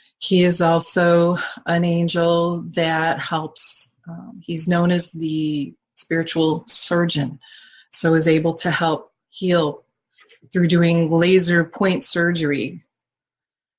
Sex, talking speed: female, 110 wpm